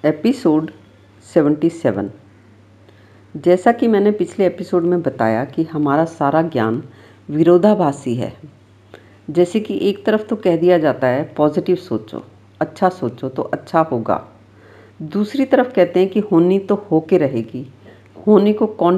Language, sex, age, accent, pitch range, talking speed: Hindi, female, 50-69, native, 115-185 Hz, 140 wpm